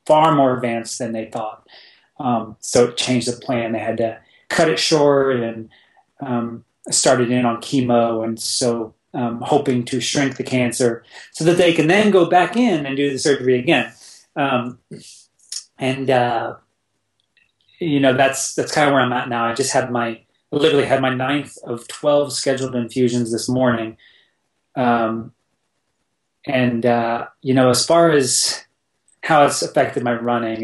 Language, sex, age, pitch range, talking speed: English, male, 30-49, 115-140 Hz, 165 wpm